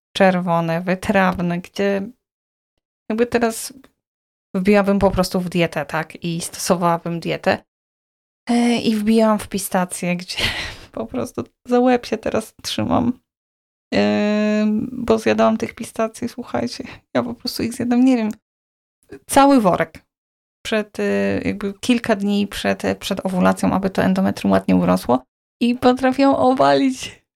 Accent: native